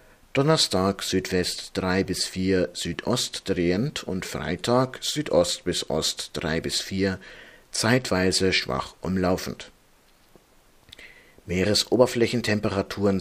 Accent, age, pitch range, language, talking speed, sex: German, 50-69, 90-110 Hz, German, 85 wpm, male